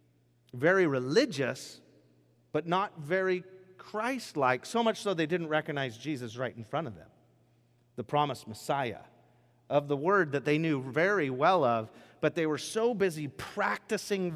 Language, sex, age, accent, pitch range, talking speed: English, male, 40-59, American, 120-165 Hz, 150 wpm